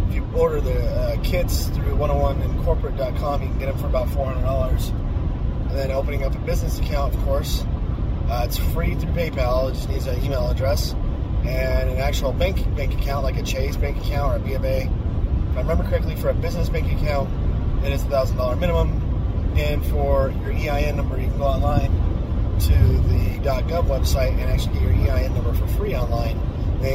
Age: 30-49